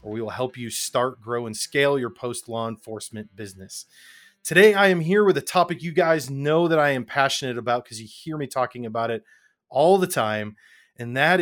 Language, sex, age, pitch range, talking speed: English, male, 30-49, 120-160 Hz, 210 wpm